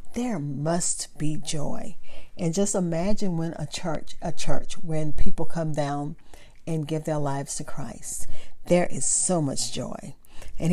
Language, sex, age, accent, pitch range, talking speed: English, female, 50-69, American, 145-185 Hz, 155 wpm